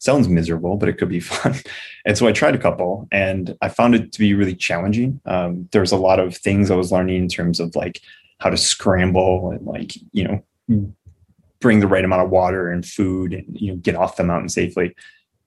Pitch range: 90-105 Hz